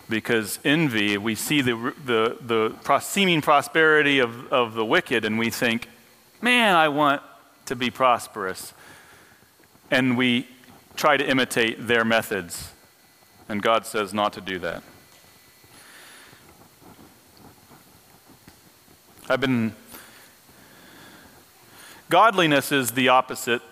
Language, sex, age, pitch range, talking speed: English, male, 40-59, 115-145 Hz, 105 wpm